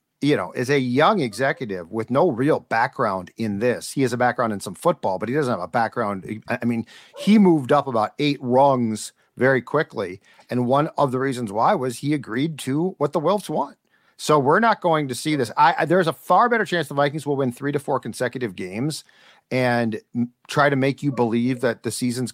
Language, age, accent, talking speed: English, 50-69, American, 220 wpm